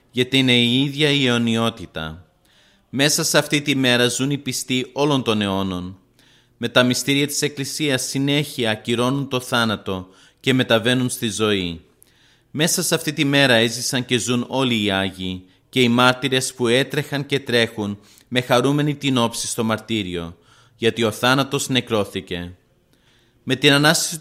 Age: 30-49